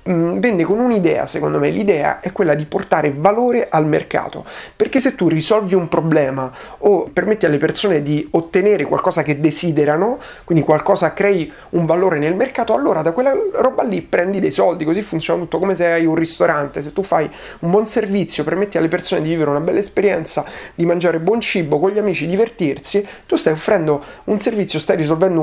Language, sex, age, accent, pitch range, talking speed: Italian, male, 30-49, native, 155-205 Hz, 190 wpm